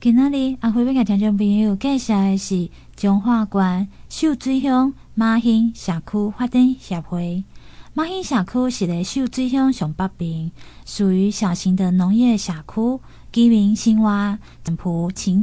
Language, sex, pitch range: Chinese, female, 180-235 Hz